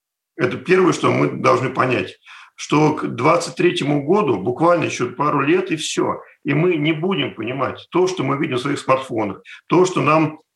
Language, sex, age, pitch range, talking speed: Russian, male, 50-69, 130-170 Hz, 180 wpm